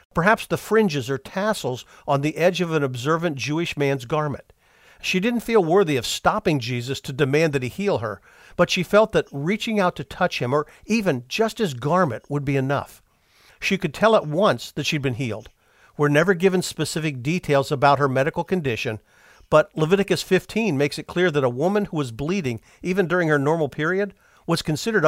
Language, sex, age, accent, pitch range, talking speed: English, male, 50-69, American, 140-195 Hz, 195 wpm